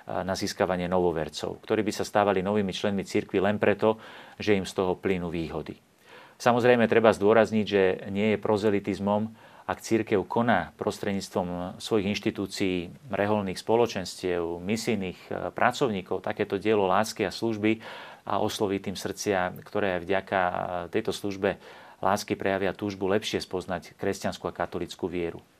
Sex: male